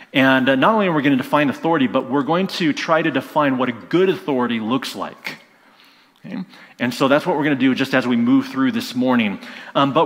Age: 30-49